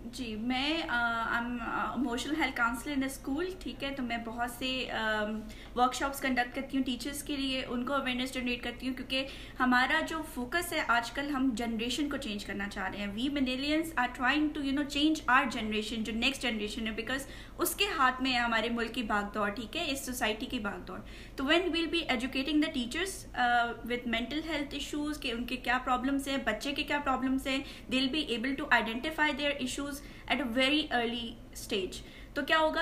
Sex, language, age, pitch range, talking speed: female, Urdu, 20-39, 240-290 Hz, 175 wpm